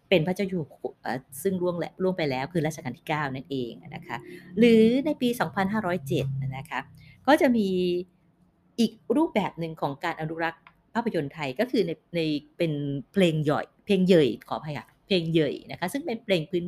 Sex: female